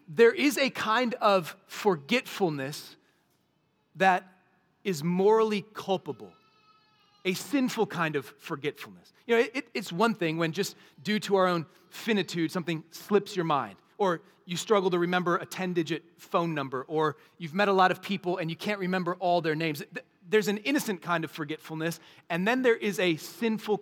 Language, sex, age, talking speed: English, male, 30-49, 165 wpm